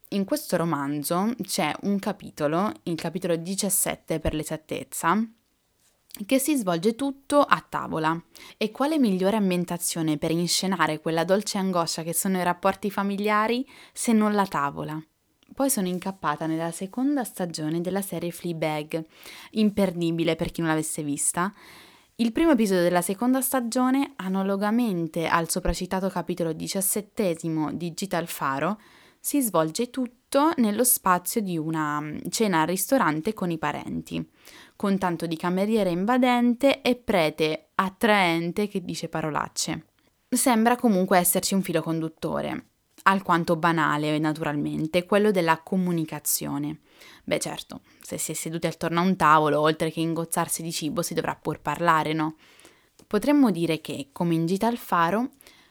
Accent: native